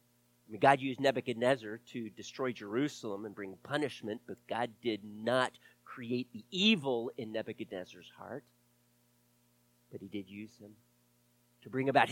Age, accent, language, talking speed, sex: 40-59, American, English, 135 wpm, male